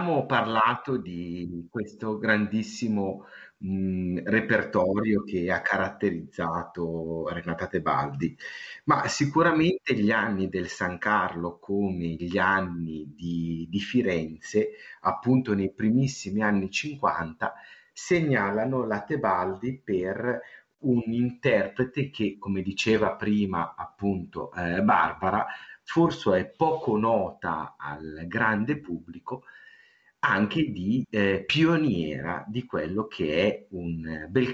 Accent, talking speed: native, 105 wpm